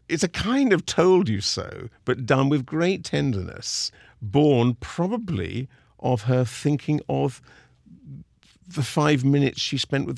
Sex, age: male, 50-69